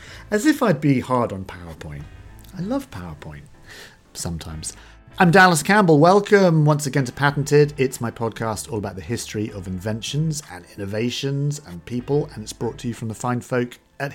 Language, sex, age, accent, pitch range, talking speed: English, male, 40-59, British, 105-150 Hz, 180 wpm